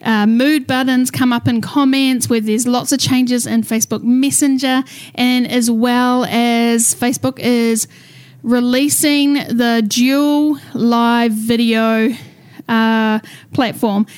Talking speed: 120 wpm